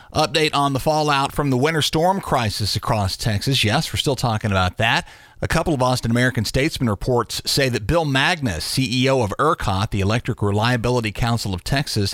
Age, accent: 40-59, American